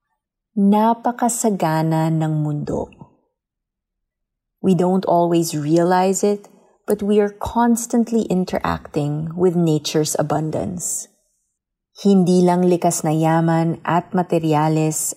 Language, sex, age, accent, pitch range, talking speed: English, female, 20-39, Filipino, 165-205 Hz, 90 wpm